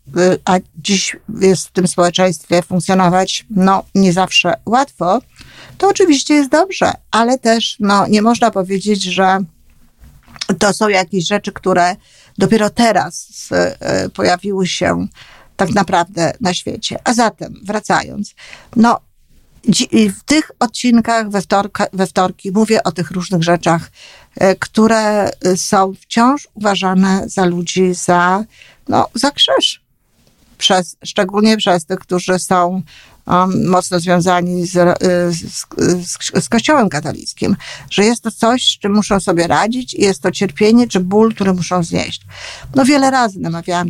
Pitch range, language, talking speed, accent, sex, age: 180-210 Hz, Polish, 135 wpm, native, female, 50-69